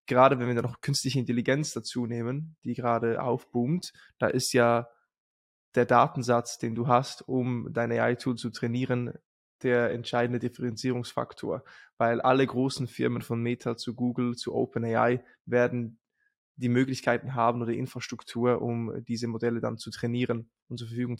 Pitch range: 120-135 Hz